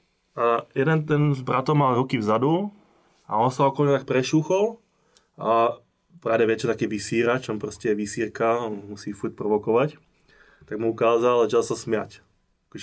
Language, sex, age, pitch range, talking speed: Czech, male, 20-39, 115-150 Hz, 160 wpm